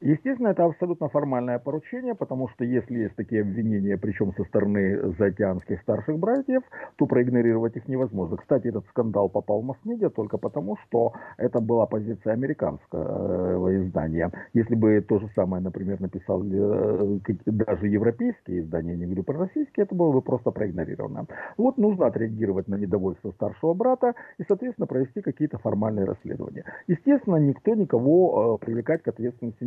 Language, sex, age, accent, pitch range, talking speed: Russian, male, 50-69, native, 100-160 Hz, 150 wpm